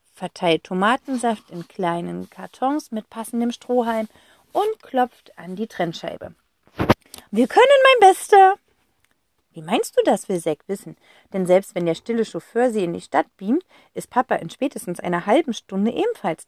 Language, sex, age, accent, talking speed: German, female, 40-59, German, 155 wpm